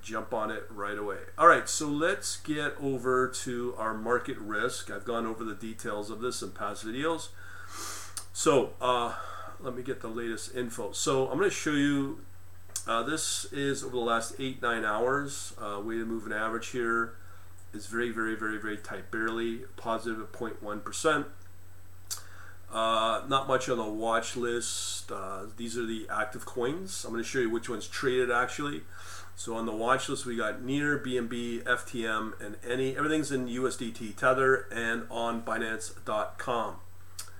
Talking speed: 165 wpm